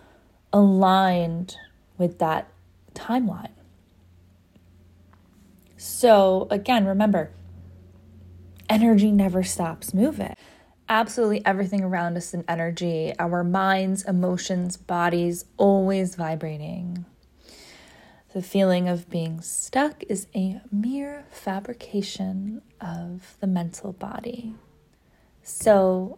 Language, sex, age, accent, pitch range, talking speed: English, female, 20-39, American, 170-215 Hz, 85 wpm